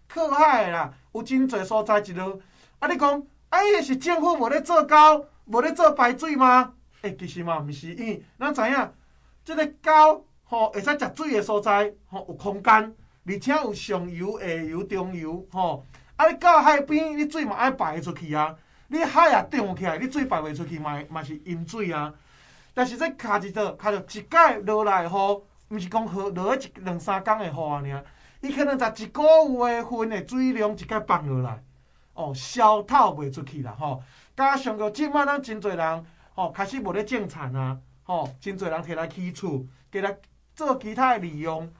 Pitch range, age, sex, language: 165-265 Hz, 20-39, male, Chinese